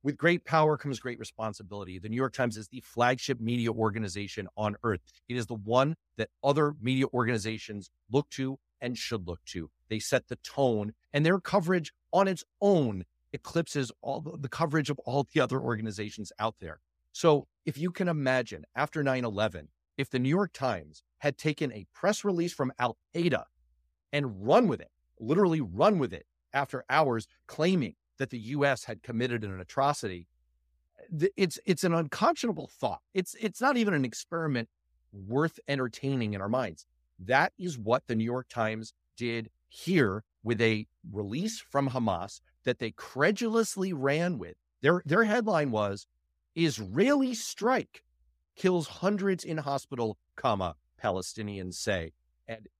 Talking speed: 160 wpm